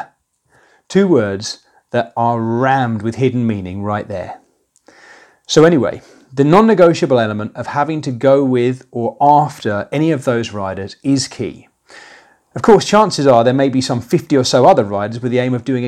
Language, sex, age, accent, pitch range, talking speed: English, male, 40-59, British, 115-160 Hz, 175 wpm